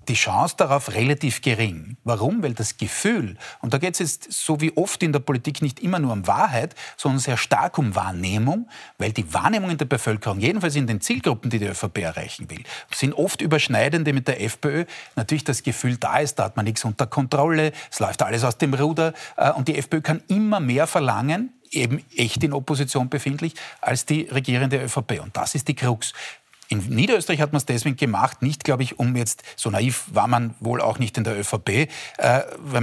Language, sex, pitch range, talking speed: German, male, 115-145 Hz, 205 wpm